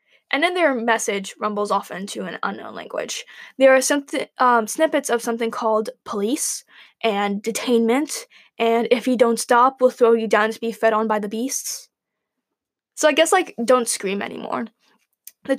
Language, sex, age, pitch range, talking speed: English, female, 10-29, 230-320 Hz, 170 wpm